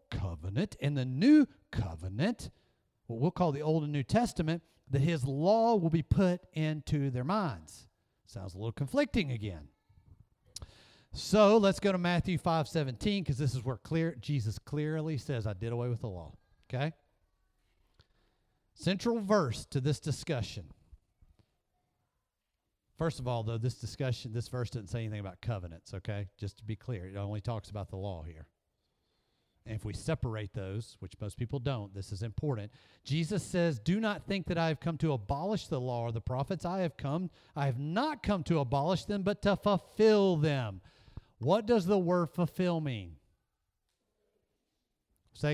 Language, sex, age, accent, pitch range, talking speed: English, male, 40-59, American, 110-165 Hz, 170 wpm